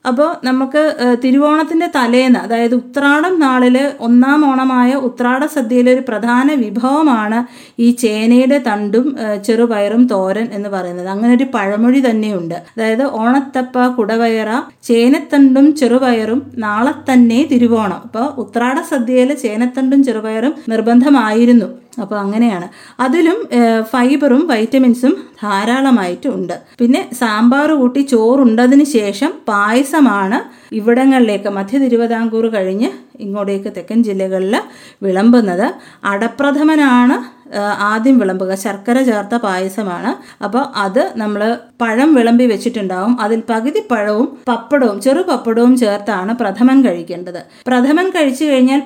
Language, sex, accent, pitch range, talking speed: Malayalam, female, native, 220-265 Hz, 100 wpm